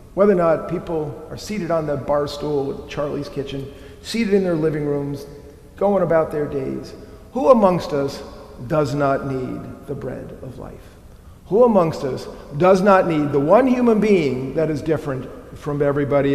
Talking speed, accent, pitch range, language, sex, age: 175 wpm, American, 130-160 Hz, English, male, 50-69